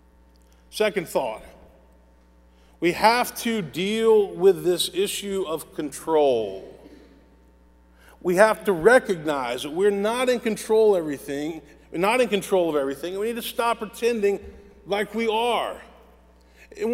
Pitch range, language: 160-225 Hz, English